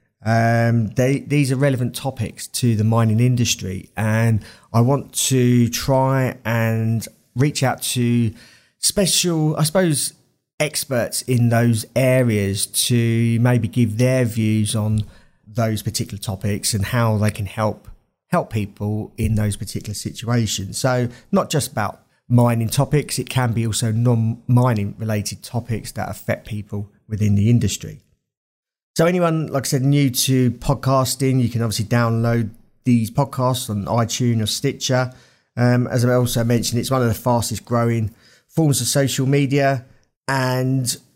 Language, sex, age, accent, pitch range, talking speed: English, male, 30-49, British, 110-130 Hz, 145 wpm